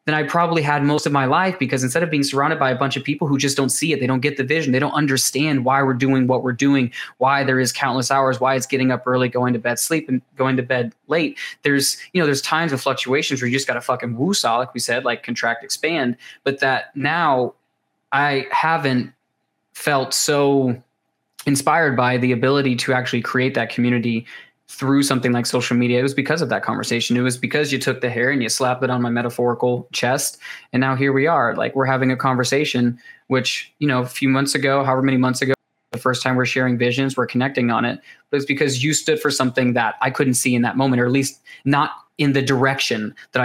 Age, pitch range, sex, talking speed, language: 20-39, 125-140 Hz, male, 235 wpm, English